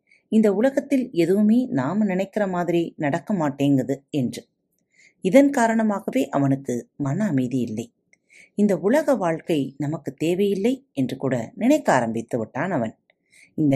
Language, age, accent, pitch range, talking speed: Tamil, 30-49, native, 135-215 Hz, 115 wpm